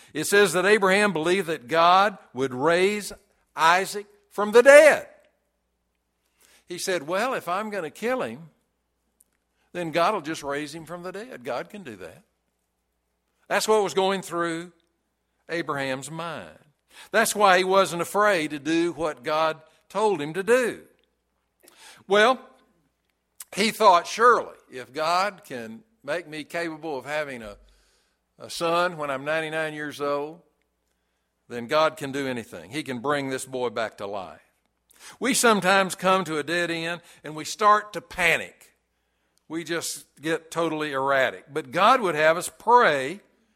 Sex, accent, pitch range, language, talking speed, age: male, American, 145-195 Hz, English, 155 wpm, 60-79